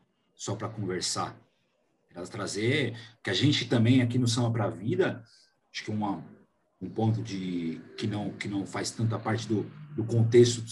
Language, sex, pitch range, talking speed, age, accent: Portuguese, male, 110-135 Hz, 180 wpm, 40-59, Brazilian